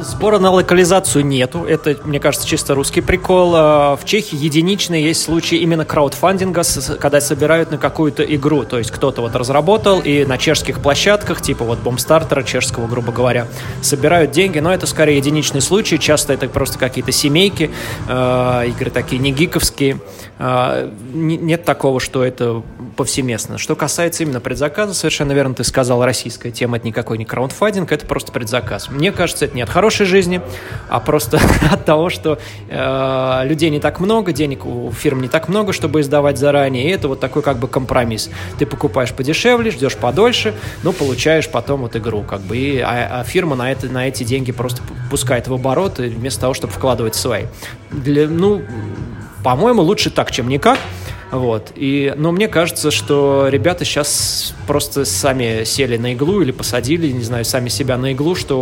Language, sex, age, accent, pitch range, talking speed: Russian, male, 20-39, native, 125-155 Hz, 165 wpm